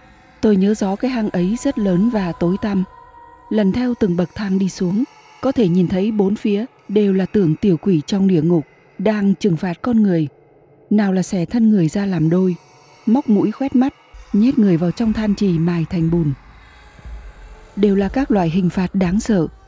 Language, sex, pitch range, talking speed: Vietnamese, female, 180-220 Hz, 200 wpm